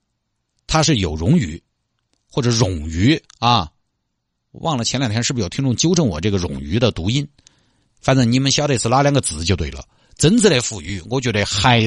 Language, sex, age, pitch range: Chinese, male, 50-69, 95-130 Hz